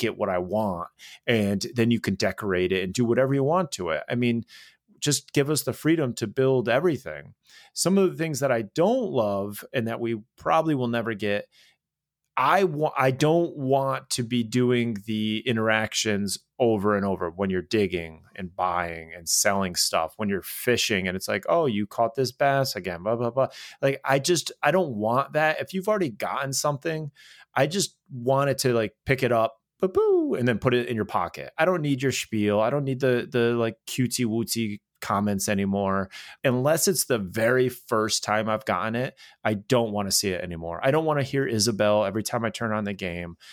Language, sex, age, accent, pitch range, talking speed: English, male, 30-49, American, 105-140 Hz, 210 wpm